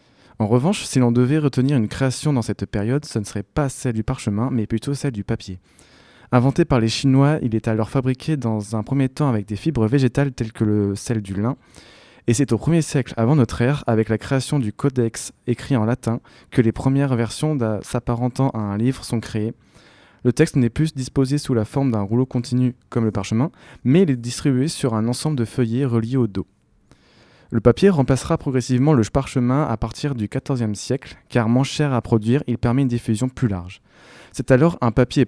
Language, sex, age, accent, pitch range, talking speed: French, male, 20-39, French, 115-135 Hz, 210 wpm